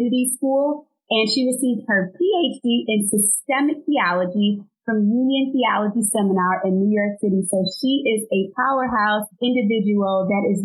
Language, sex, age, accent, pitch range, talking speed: English, female, 30-49, American, 210-255 Hz, 140 wpm